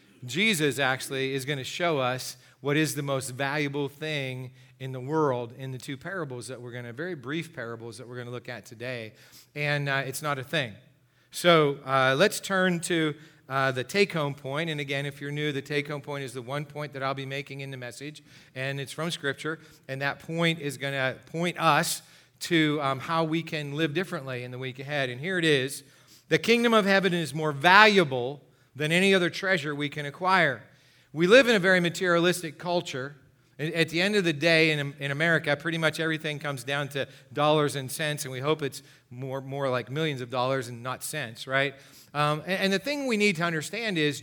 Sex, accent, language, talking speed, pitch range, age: male, American, English, 210 wpm, 135-165 Hz, 40-59